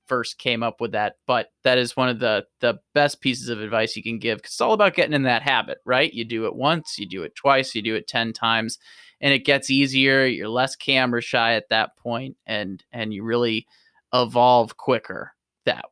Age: 20-39